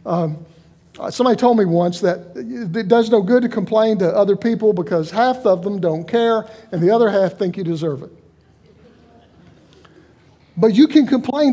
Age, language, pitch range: 50-69, English, 165-220 Hz